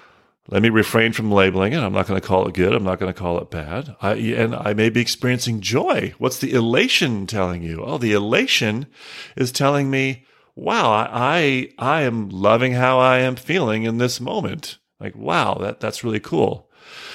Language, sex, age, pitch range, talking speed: English, male, 40-59, 95-130 Hz, 190 wpm